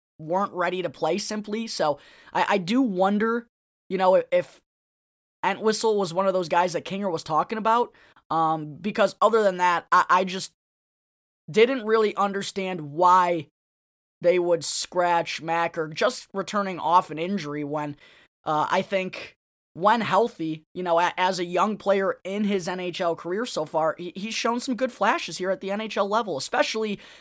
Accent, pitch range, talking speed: American, 160-205 Hz, 165 wpm